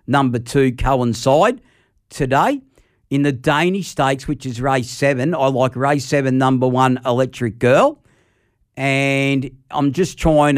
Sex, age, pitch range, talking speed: male, 50-69, 120-135 Hz, 135 wpm